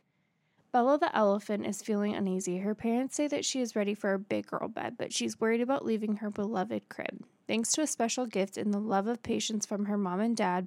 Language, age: English, 20-39